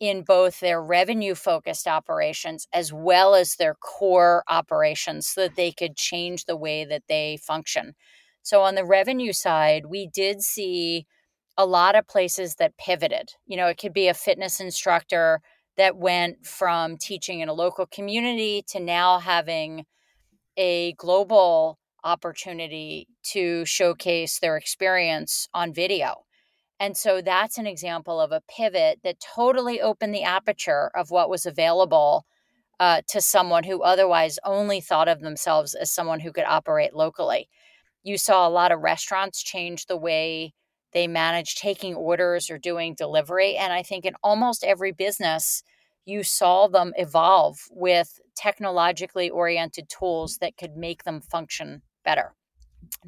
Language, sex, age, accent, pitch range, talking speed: English, female, 40-59, American, 170-200 Hz, 150 wpm